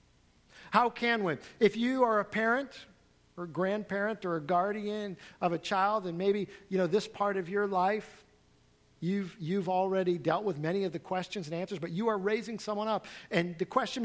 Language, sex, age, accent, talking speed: English, male, 50-69, American, 190 wpm